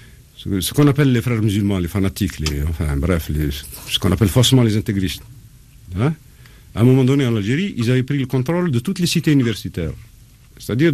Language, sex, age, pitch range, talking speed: French, male, 50-69, 100-135 Hz, 185 wpm